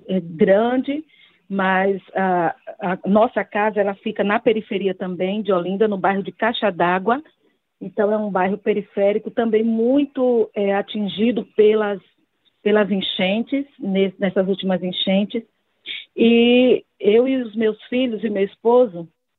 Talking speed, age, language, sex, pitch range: 135 wpm, 40-59, Portuguese, female, 195-230 Hz